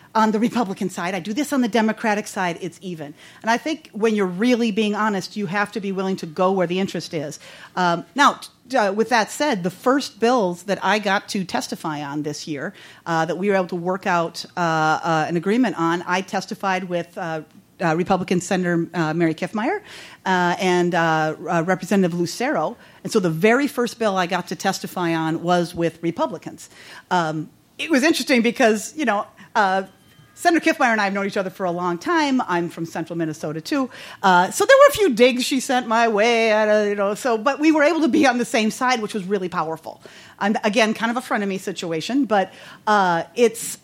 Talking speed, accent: 210 wpm, American